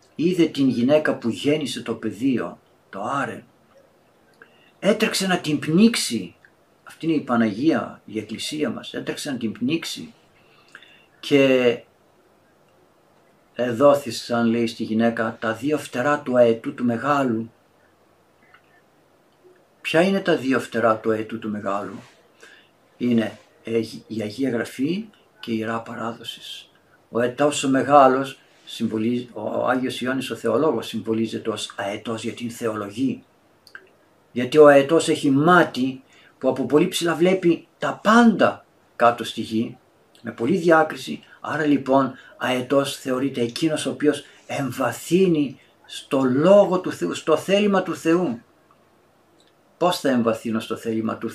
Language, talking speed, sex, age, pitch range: Greek, 125 wpm, male, 60-79, 115-155 Hz